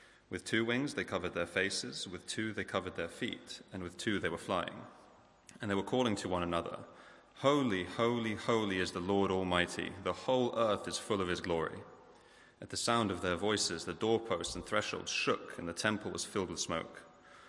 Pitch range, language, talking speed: 90-110 Hz, English, 200 wpm